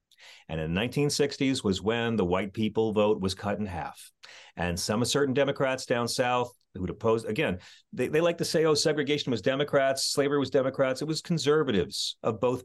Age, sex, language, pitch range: 40-59, male, English, 105-145 Hz